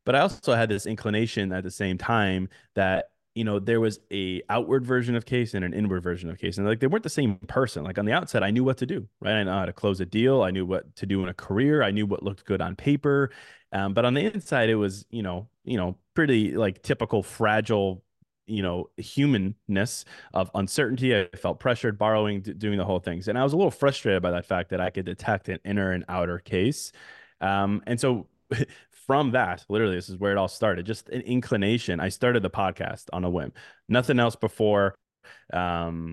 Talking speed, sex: 230 wpm, male